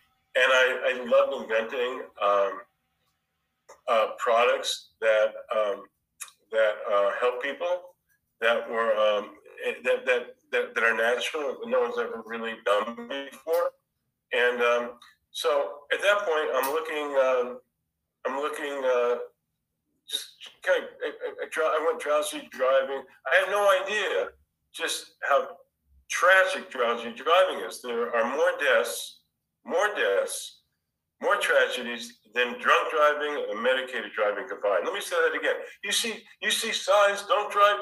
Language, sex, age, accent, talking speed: English, male, 50-69, American, 140 wpm